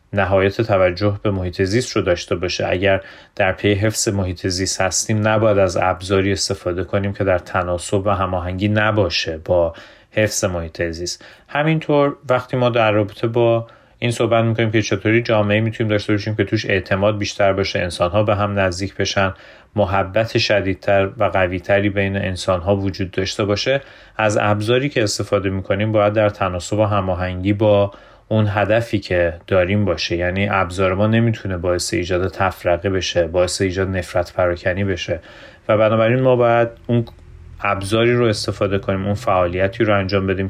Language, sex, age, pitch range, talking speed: Persian, male, 30-49, 95-110 Hz, 160 wpm